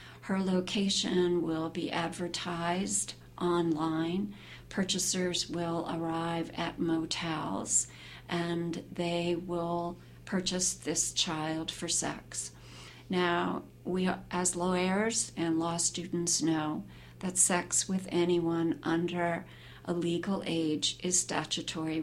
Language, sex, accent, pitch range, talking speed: English, female, American, 160-180 Hz, 100 wpm